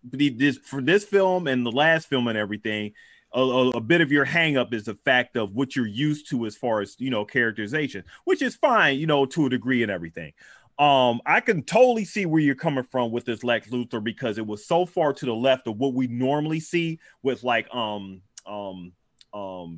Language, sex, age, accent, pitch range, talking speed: English, male, 30-49, American, 110-150 Hz, 220 wpm